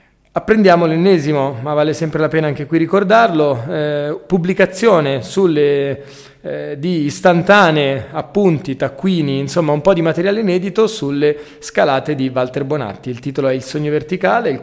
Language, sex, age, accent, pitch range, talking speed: Italian, male, 30-49, native, 140-180 Hz, 150 wpm